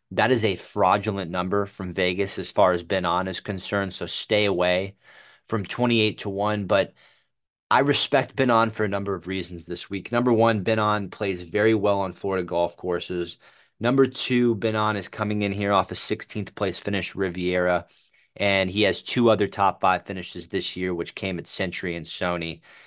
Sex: male